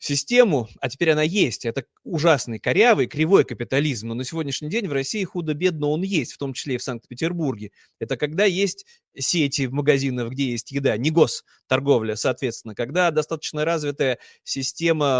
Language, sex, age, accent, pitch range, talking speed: Russian, male, 30-49, native, 135-185 Hz, 160 wpm